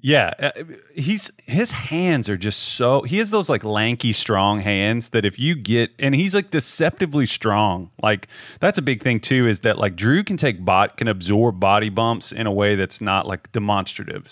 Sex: male